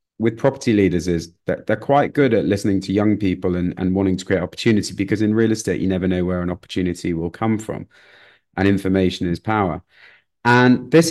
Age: 30-49